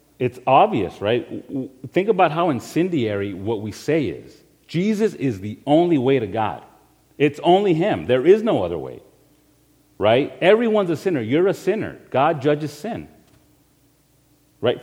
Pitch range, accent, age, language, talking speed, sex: 125-165 Hz, American, 40-59, English, 150 wpm, male